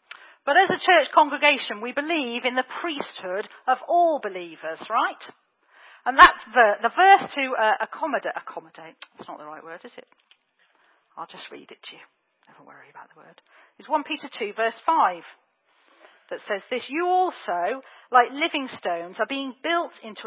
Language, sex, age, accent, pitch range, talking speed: English, female, 40-59, British, 195-300 Hz, 175 wpm